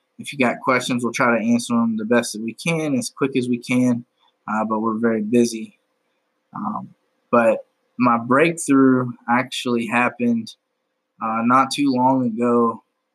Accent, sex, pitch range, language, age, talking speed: American, male, 115-130 Hz, English, 20-39, 160 wpm